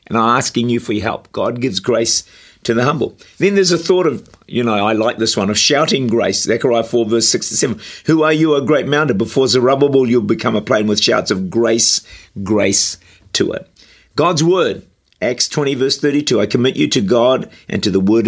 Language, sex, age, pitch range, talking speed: English, male, 50-69, 100-135 Hz, 215 wpm